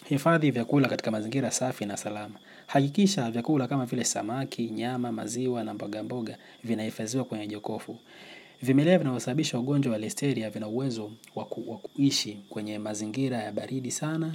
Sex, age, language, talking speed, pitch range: male, 30-49, Swahili, 140 wpm, 110-135 Hz